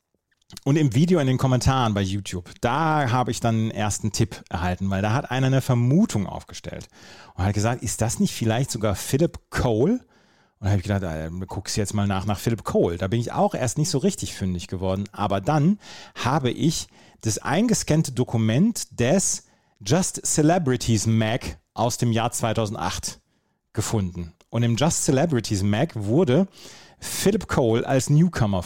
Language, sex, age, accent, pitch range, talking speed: German, male, 40-59, German, 100-140 Hz, 175 wpm